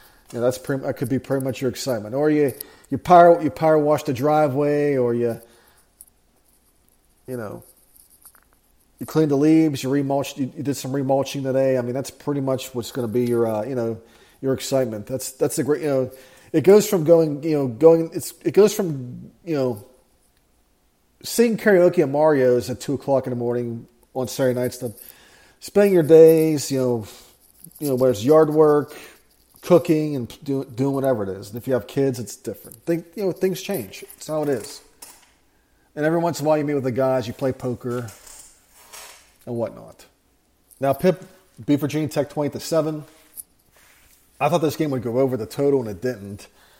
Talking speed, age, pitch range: 190 wpm, 40-59, 125-155 Hz